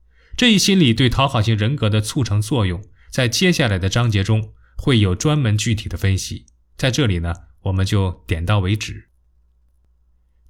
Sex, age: male, 20-39